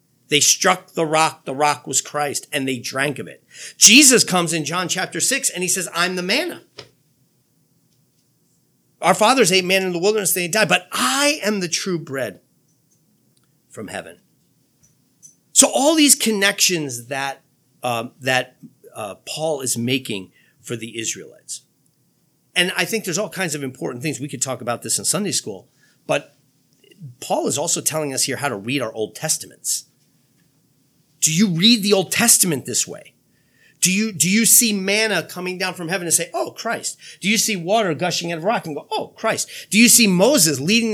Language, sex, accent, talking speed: English, male, American, 180 wpm